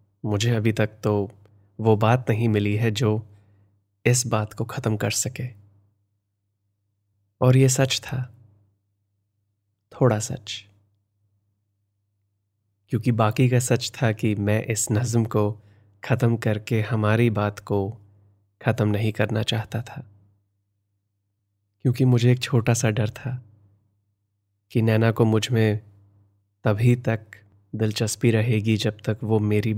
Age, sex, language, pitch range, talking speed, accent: 20-39, male, Hindi, 100-115 Hz, 125 wpm, native